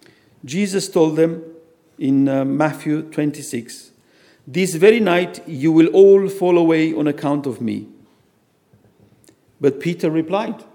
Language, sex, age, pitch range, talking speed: English, male, 50-69, 130-180 Hz, 125 wpm